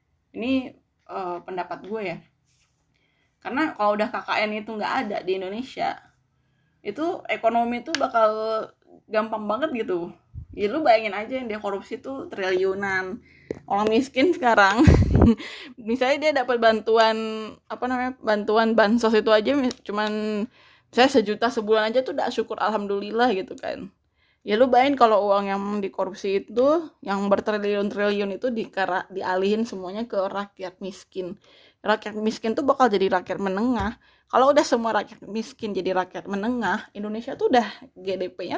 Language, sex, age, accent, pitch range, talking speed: Indonesian, female, 20-39, native, 185-240 Hz, 140 wpm